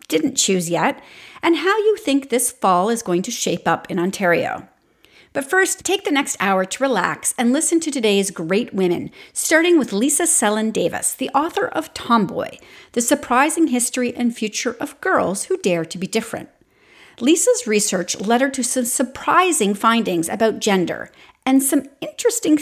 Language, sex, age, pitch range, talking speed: English, female, 40-59, 200-290 Hz, 170 wpm